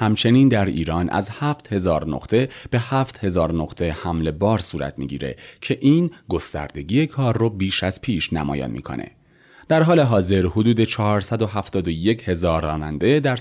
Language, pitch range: Persian, 85-130 Hz